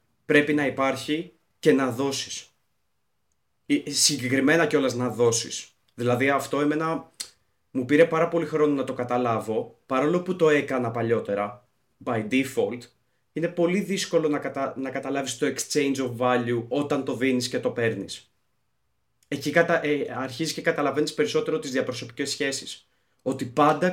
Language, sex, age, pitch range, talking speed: Greek, male, 30-49, 130-160 Hz, 140 wpm